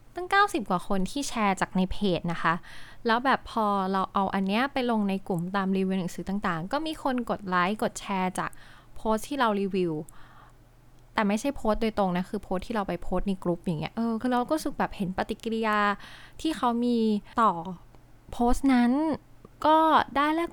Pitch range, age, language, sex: 185-245 Hz, 20-39, Thai, female